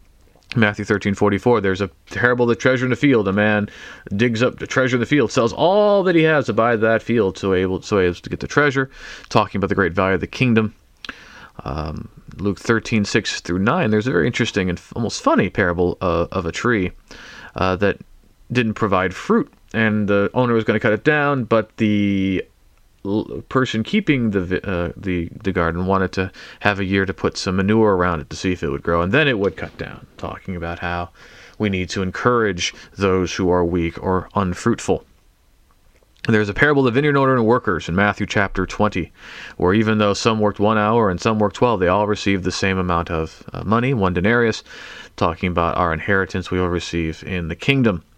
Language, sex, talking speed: English, male, 205 wpm